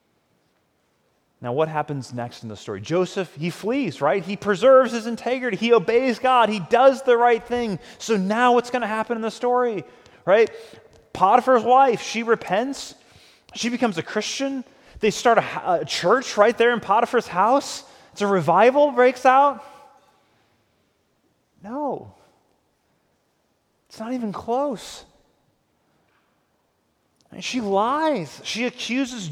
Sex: male